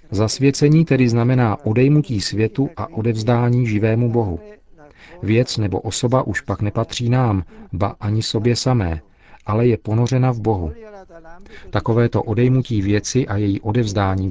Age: 40-59